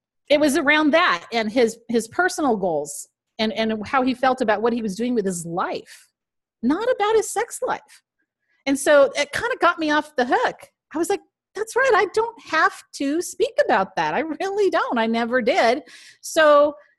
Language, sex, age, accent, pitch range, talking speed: English, female, 40-59, American, 215-305 Hz, 200 wpm